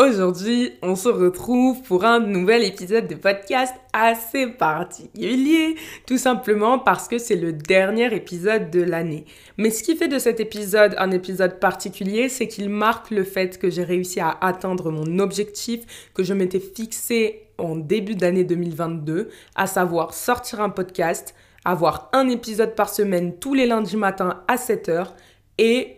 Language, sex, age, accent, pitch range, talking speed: French, female, 20-39, French, 185-225 Hz, 160 wpm